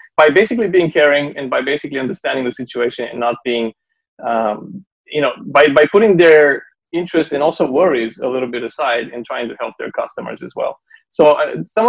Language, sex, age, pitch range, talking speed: English, male, 30-49, 125-170 Hz, 195 wpm